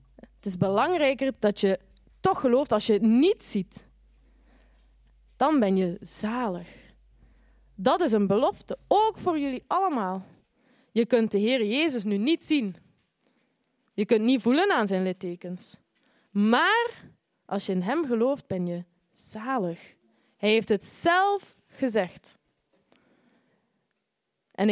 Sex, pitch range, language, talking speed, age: female, 195-260 Hz, Dutch, 130 wpm, 20-39